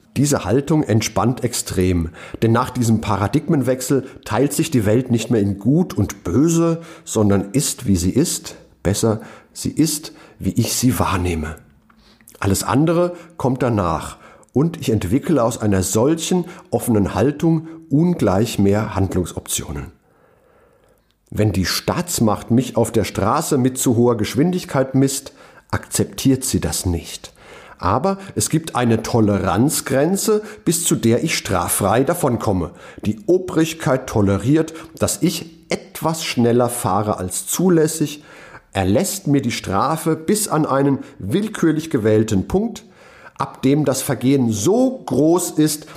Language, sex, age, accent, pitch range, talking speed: German, male, 50-69, German, 105-155 Hz, 130 wpm